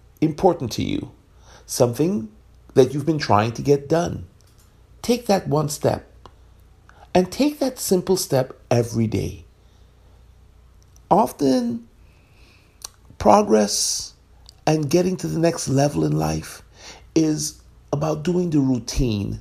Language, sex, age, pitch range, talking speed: English, male, 50-69, 95-145 Hz, 115 wpm